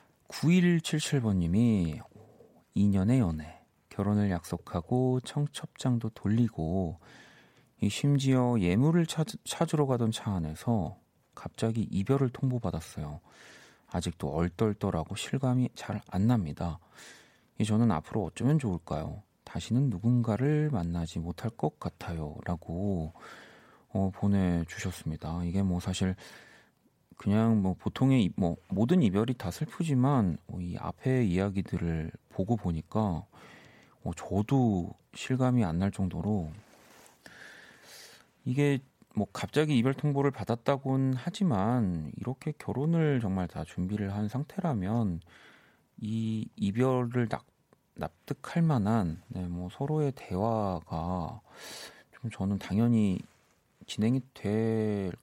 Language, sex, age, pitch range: Korean, male, 40-59, 90-130 Hz